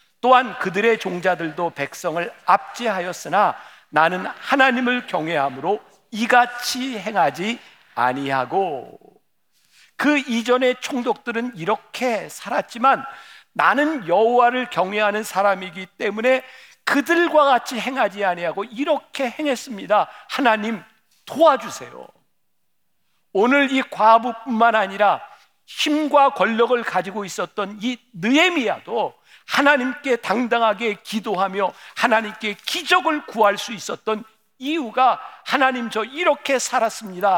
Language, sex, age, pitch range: Korean, male, 50-69, 205-265 Hz